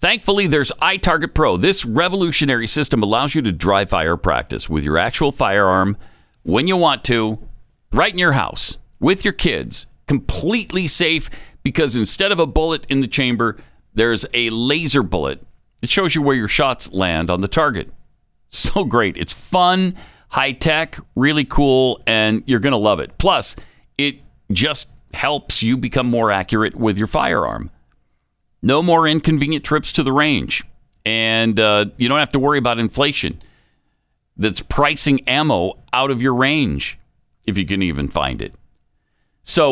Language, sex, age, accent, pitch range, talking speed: English, male, 50-69, American, 105-150 Hz, 160 wpm